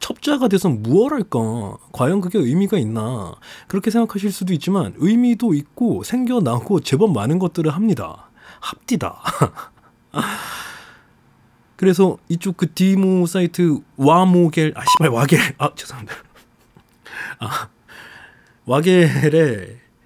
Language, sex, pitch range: Korean, male, 120-185 Hz